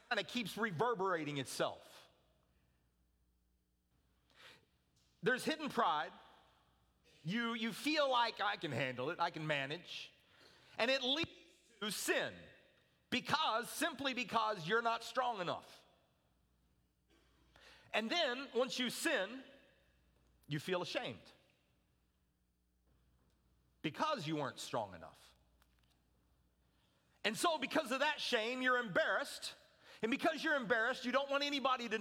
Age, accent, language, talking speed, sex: 40-59, American, English, 110 wpm, male